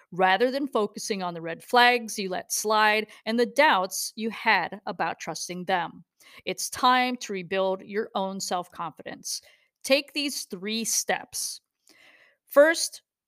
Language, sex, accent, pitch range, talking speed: English, female, American, 200-265 Hz, 135 wpm